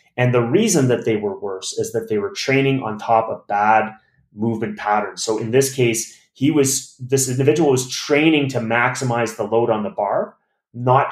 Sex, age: male, 30-49